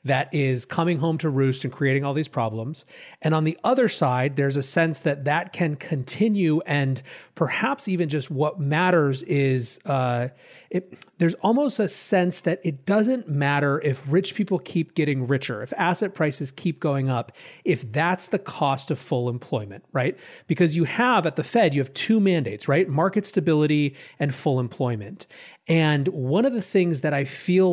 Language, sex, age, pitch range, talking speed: English, male, 30-49, 135-180 Hz, 180 wpm